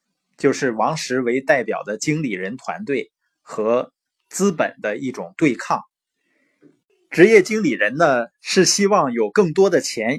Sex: male